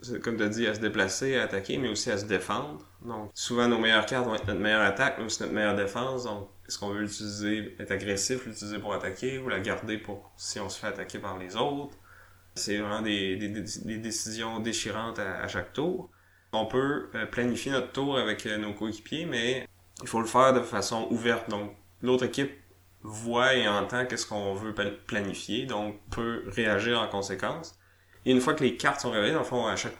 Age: 20-39